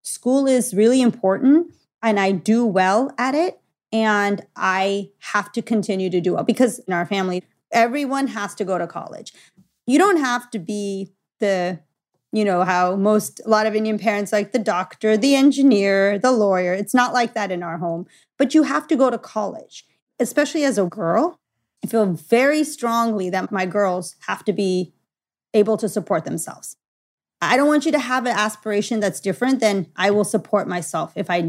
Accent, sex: American, female